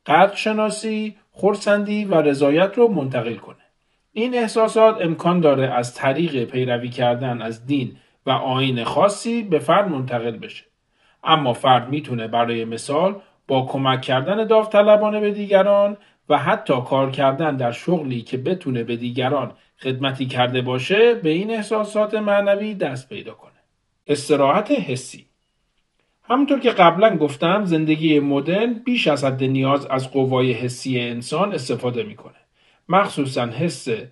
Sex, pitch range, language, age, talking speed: male, 130-200 Hz, Persian, 40-59, 135 wpm